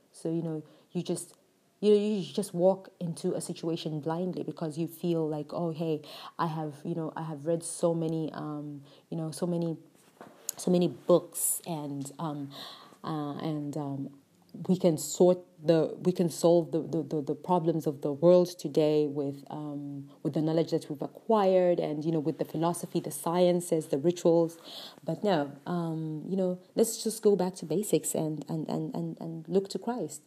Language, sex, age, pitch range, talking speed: English, female, 30-49, 155-180 Hz, 185 wpm